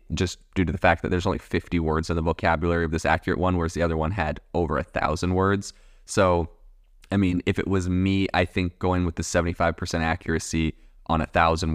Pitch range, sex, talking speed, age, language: 85-100 Hz, male, 220 wpm, 20-39, English